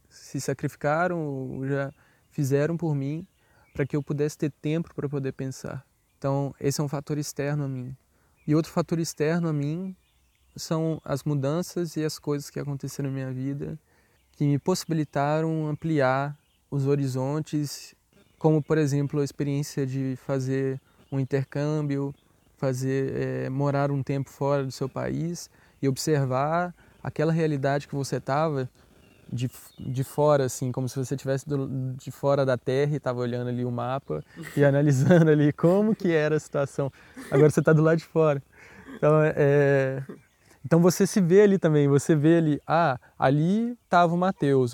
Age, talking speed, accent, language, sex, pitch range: 20-39, 160 wpm, Brazilian, German, male, 135-155 Hz